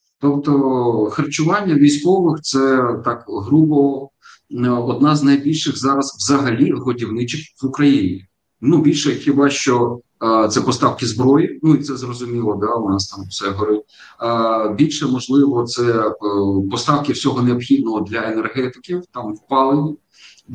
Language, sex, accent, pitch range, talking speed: Ukrainian, male, native, 115-145 Hz, 130 wpm